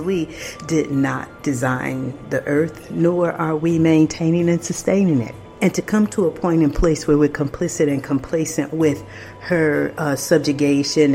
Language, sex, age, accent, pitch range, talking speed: English, female, 50-69, American, 135-160 Hz, 160 wpm